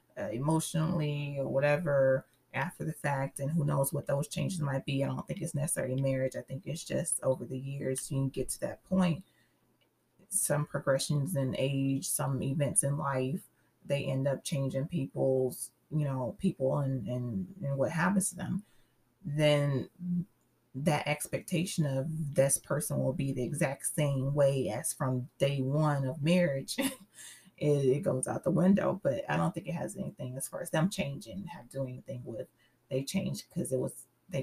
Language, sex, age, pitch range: English, female, 30-49, 135-175 Hz